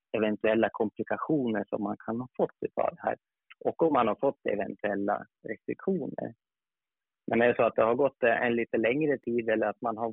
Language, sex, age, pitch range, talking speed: Swedish, male, 30-49, 110-130 Hz, 190 wpm